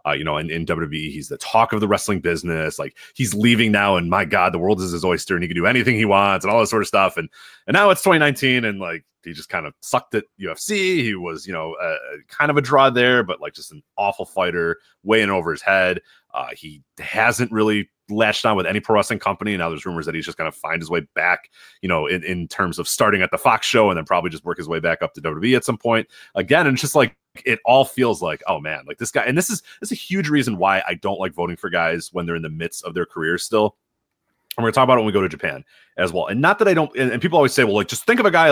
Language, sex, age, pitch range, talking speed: English, male, 30-49, 100-145 Hz, 295 wpm